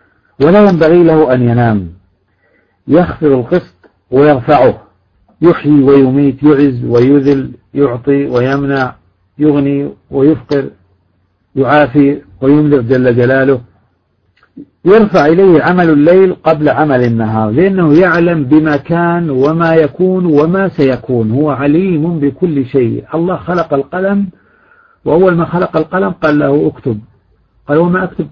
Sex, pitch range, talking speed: male, 120-170 Hz, 110 wpm